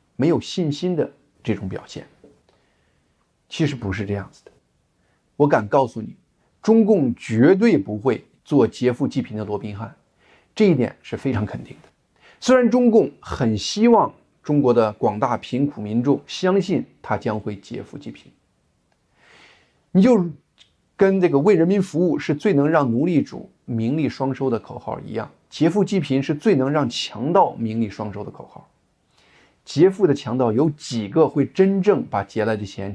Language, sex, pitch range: Chinese, male, 115-180 Hz